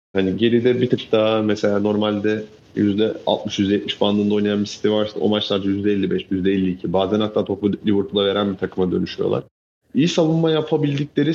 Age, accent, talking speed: 30-49, native, 145 wpm